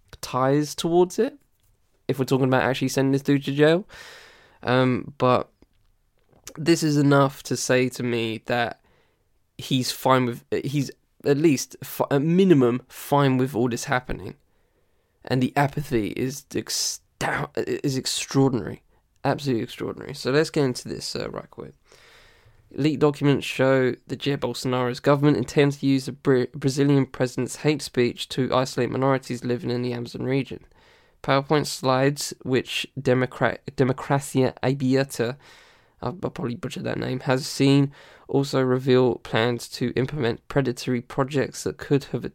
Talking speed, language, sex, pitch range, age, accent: 140 wpm, English, male, 125-140 Hz, 10-29, British